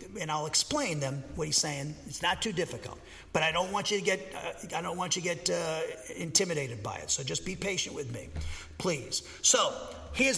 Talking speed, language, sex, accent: 220 wpm, English, male, American